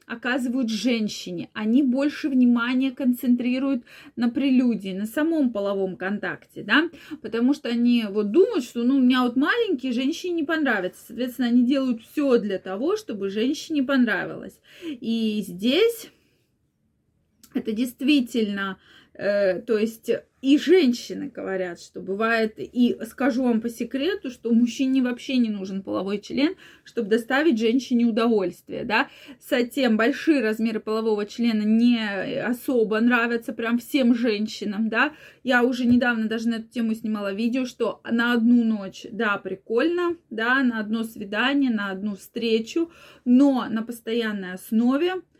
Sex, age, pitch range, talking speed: female, 20-39, 220-270 Hz, 135 wpm